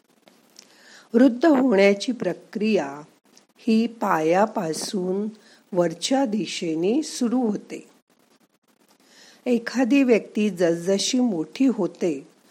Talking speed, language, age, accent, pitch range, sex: 70 wpm, Marathi, 50-69, native, 185-245 Hz, female